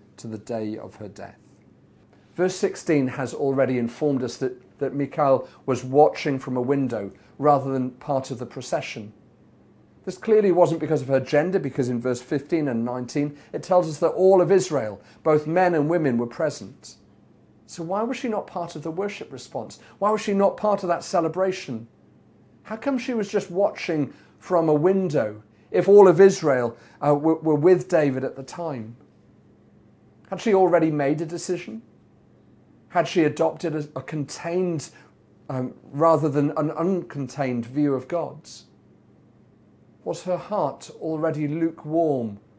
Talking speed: 160 wpm